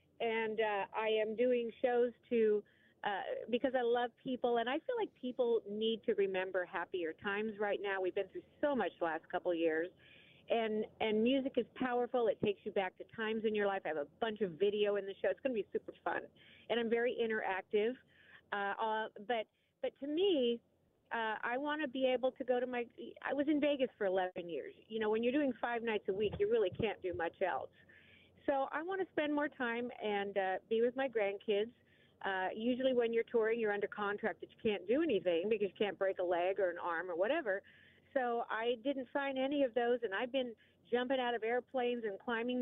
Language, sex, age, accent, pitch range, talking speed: English, female, 40-59, American, 205-260 Hz, 220 wpm